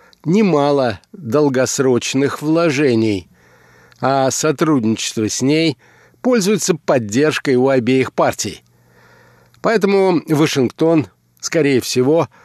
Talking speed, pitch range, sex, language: 75 wpm, 120-165 Hz, male, Russian